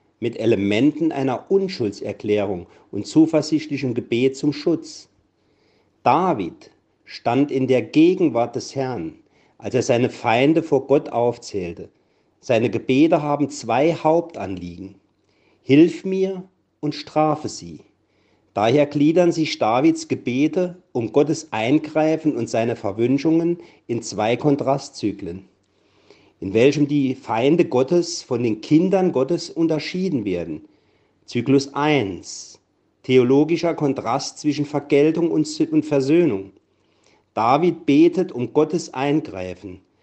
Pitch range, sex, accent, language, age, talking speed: 120-165 Hz, male, German, German, 50-69, 105 wpm